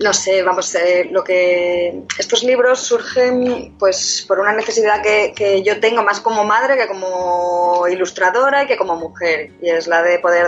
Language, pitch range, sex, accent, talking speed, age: Spanish, 170-200 Hz, female, Spanish, 185 wpm, 20-39